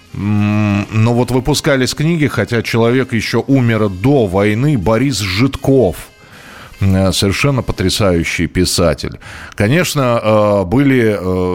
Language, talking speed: Russian, 90 wpm